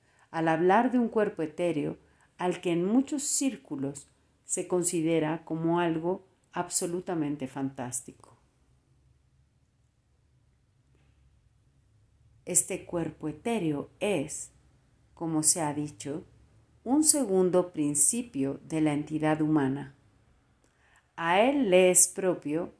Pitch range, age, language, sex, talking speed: 150-200 Hz, 40-59, Spanish, female, 95 wpm